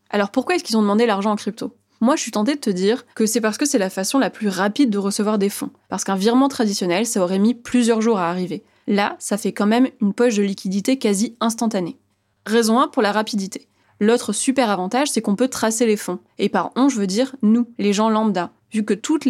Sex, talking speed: female, 245 wpm